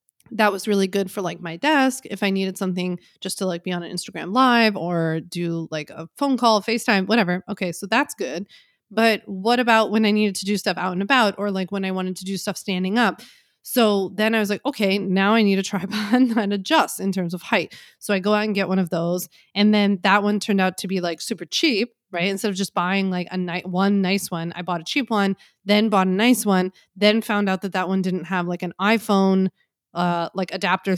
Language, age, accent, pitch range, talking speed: English, 20-39, American, 185-215 Hz, 245 wpm